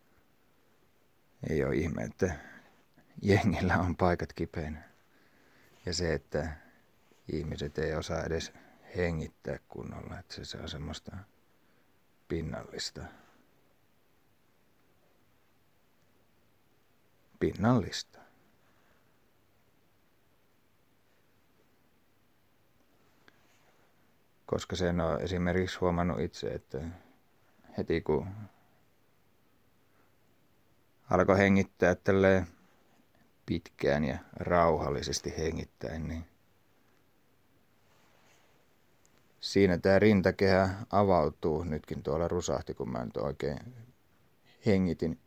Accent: native